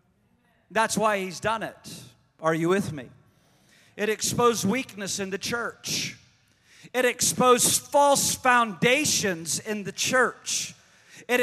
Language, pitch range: English, 155-240 Hz